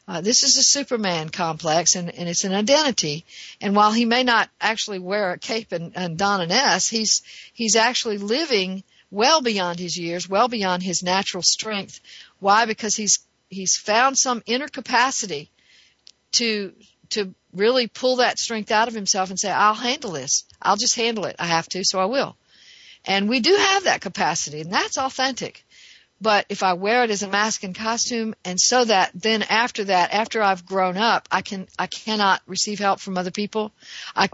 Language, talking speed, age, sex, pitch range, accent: English, 190 wpm, 50-69, female, 180-225 Hz, American